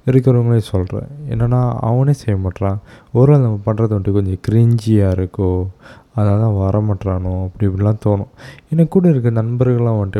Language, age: Tamil, 20-39